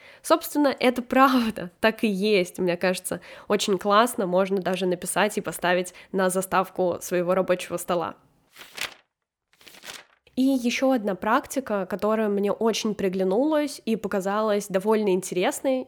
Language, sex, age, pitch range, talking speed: Russian, female, 10-29, 195-240 Hz, 120 wpm